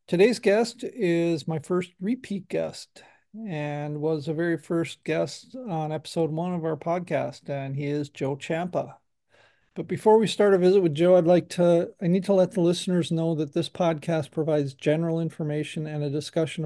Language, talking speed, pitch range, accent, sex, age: English, 185 wpm, 150-175 Hz, American, male, 40-59